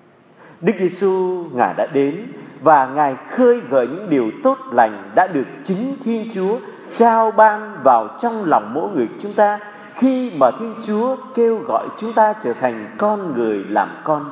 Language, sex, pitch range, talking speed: Vietnamese, male, 150-220 Hz, 170 wpm